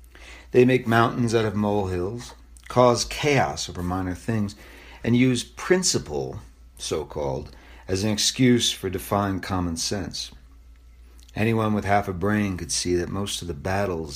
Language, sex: English, male